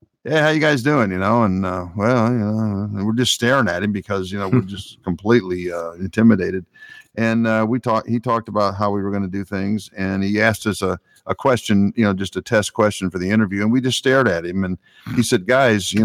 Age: 50-69